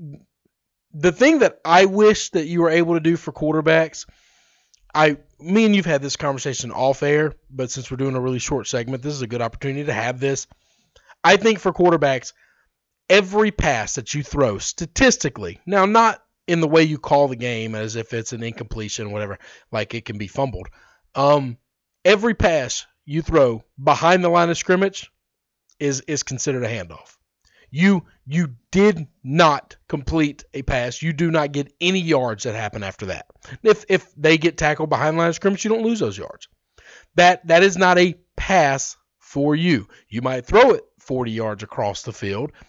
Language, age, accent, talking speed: English, 40-59, American, 185 wpm